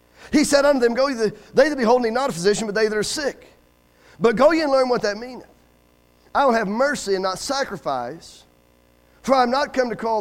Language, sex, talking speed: English, male, 230 wpm